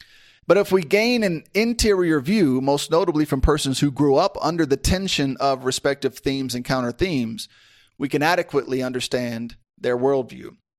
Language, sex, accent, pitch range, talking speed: English, male, American, 130-170 Hz, 160 wpm